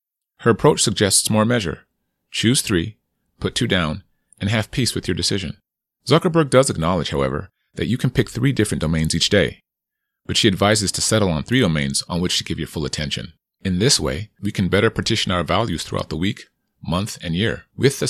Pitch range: 90-115 Hz